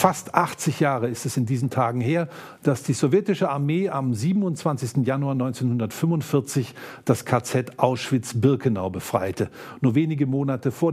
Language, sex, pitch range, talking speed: German, male, 110-140 Hz, 135 wpm